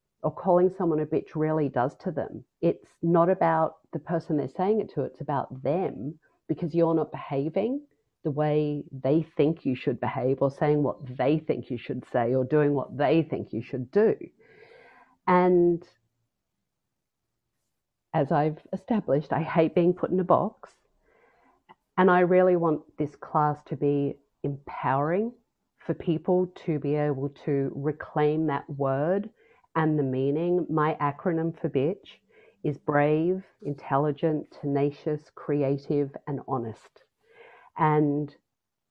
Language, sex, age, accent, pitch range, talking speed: English, female, 40-59, Australian, 140-170 Hz, 140 wpm